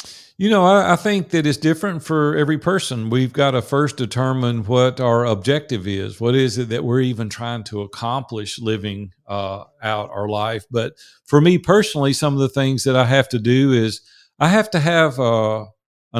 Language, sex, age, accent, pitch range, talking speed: English, male, 50-69, American, 115-145 Hz, 195 wpm